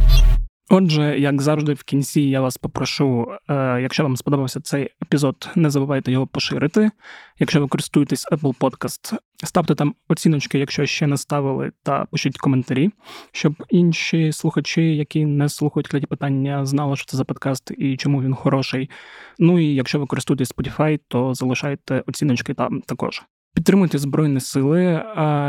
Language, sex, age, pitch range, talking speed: Ukrainian, male, 20-39, 135-150 Hz, 150 wpm